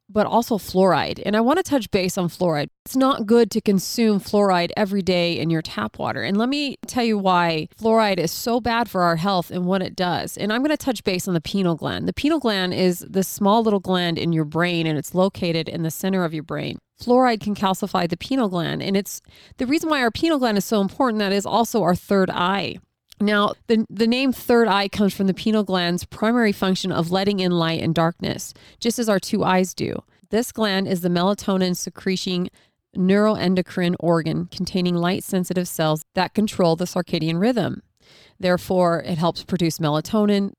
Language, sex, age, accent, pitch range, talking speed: English, female, 30-49, American, 170-215 Hz, 205 wpm